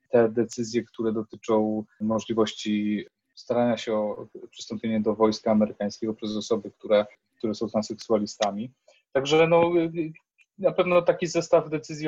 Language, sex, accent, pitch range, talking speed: Polish, male, native, 110-125 Hz, 120 wpm